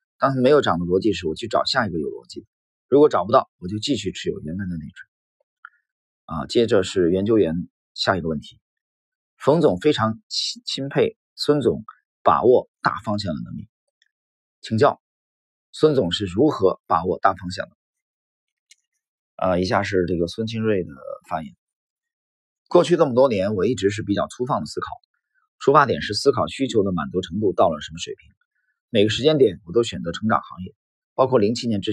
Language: Chinese